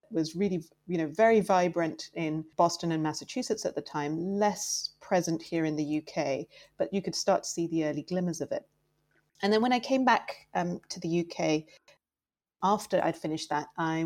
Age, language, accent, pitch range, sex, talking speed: 30-49, English, British, 155-190 Hz, female, 190 wpm